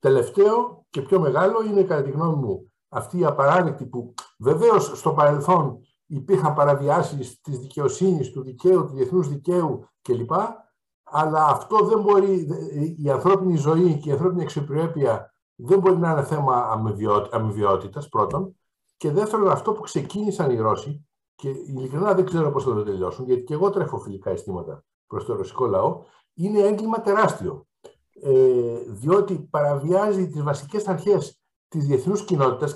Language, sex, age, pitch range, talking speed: Greek, male, 60-79, 140-190 Hz, 145 wpm